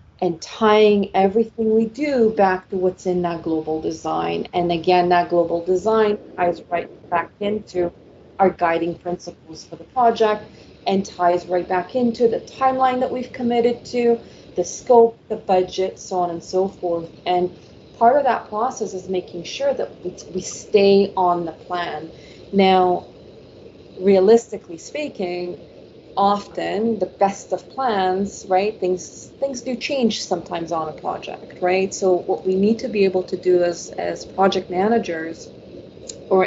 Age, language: 30-49, English